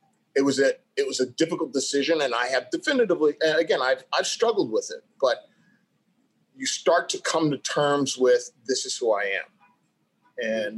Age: 30-49